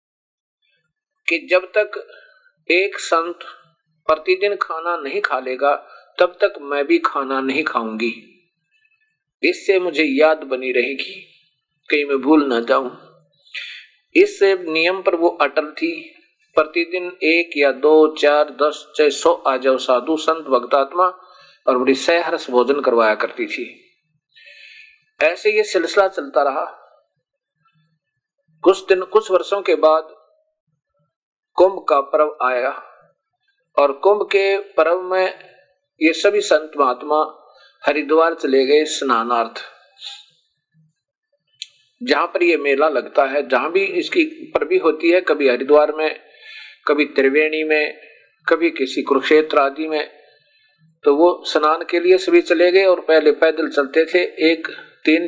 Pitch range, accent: 145-195 Hz, native